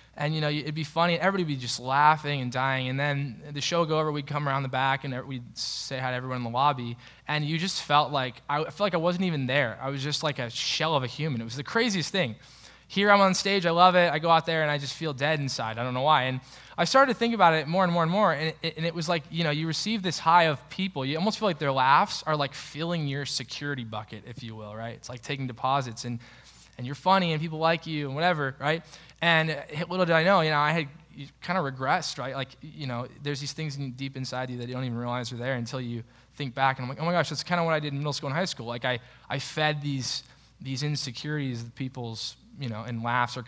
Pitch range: 130-165 Hz